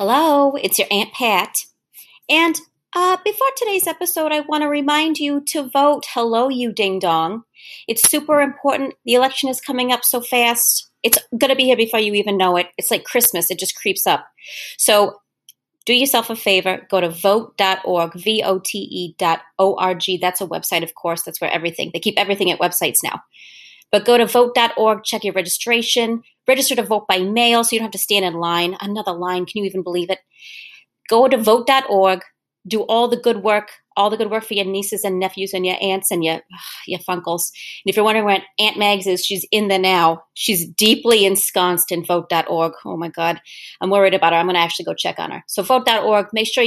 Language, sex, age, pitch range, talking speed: English, female, 30-49, 185-240 Hz, 205 wpm